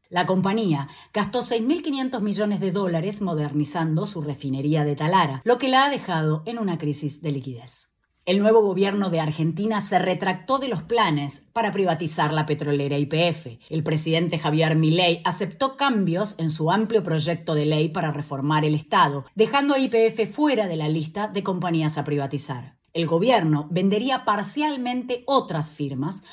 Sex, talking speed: female, 160 wpm